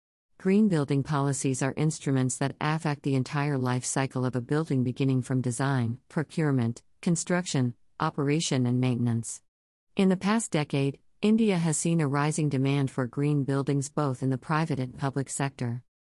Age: 50-69